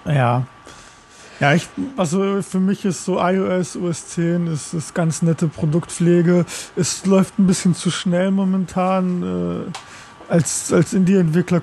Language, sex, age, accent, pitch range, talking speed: German, male, 20-39, German, 160-180 Hz, 145 wpm